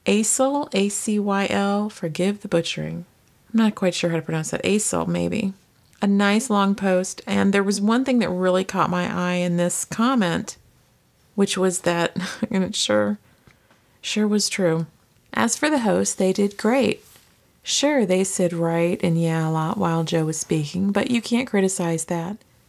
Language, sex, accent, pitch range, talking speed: English, female, American, 170-200 Hz, 170 wpm